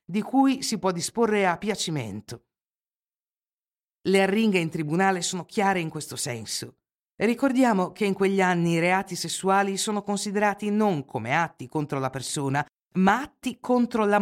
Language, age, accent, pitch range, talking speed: Italian, 50-69, native, 150-205 Hz, 150 wpm